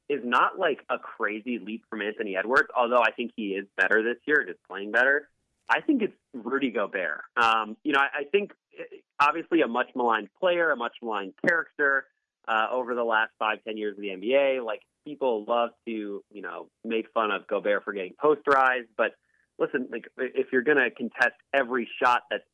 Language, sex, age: English, male, 30-49